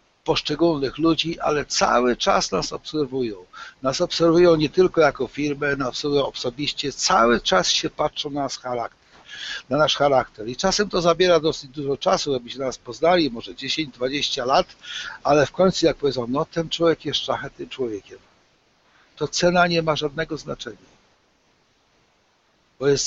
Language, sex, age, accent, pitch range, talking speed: Polish, male, 60-79, native, 130-160 Hz, 155 wpm